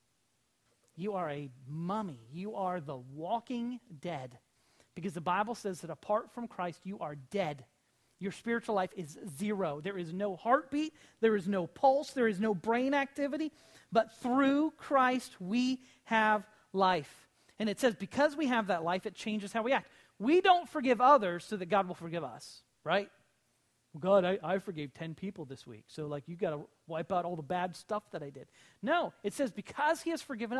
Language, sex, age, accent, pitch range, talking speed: English, male, 40-59, American, 180-250 Hz, 190 wpm